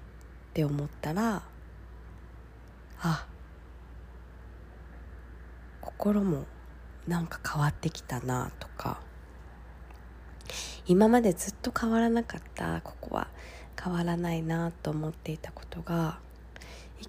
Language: Japanese